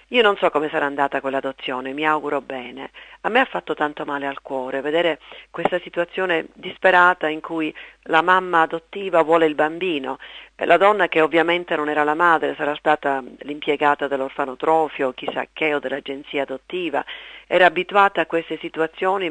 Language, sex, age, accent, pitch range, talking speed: Italian, female, 40-59, native, 145-180 Hz, 165 wpm